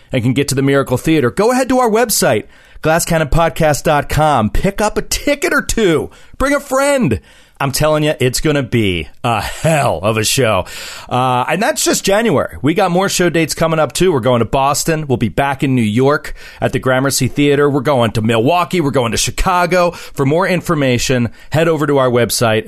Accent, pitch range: American, 125-170 Hz